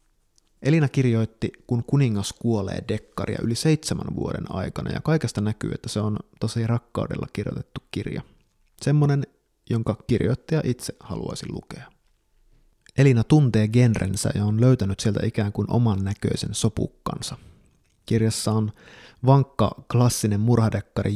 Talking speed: 120 wpm